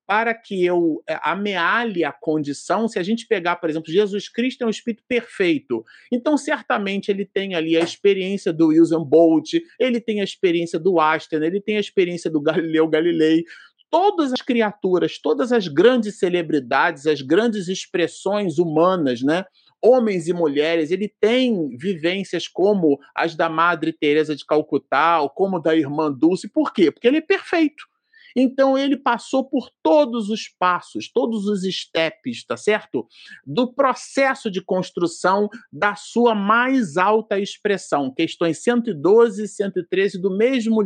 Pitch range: 165-235 Hz